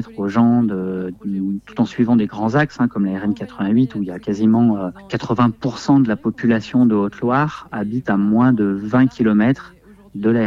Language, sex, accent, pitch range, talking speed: French, male, French, 100-125 Hz, 195 wpm